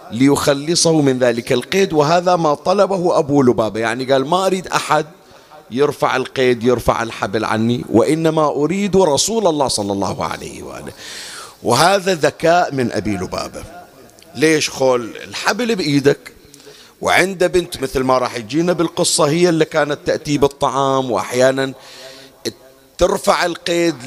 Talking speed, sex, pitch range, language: 125 wpm, male, 125-170 Hz, Arabic